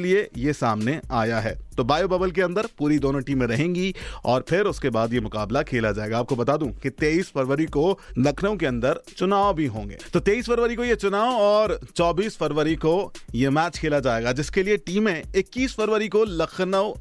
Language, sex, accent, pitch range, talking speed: Hindi, male, native, 135-190 Hz, 90 wpm